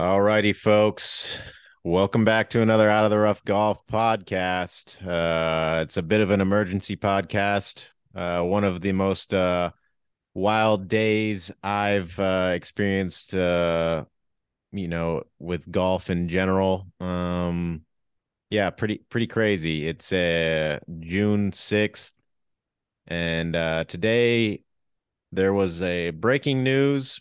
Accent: American